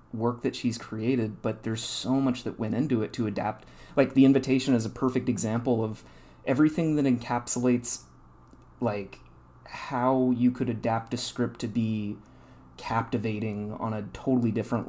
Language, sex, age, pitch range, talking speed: English, male, 30-49, 110-125 Hz, 155 wpm